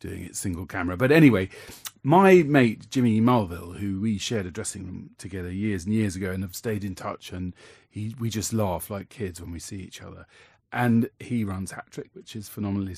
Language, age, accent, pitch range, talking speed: English, 40-59, British, 100-135 Hz, 215 wpm